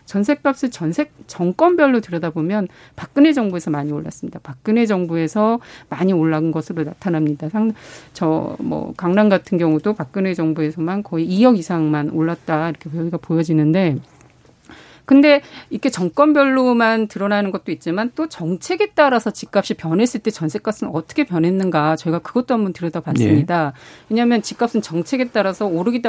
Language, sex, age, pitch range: Korean, female, 40-59, 165-245 Hz